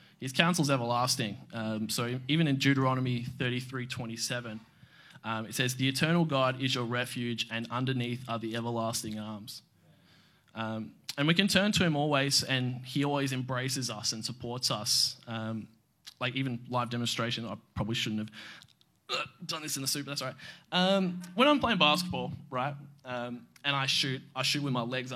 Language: English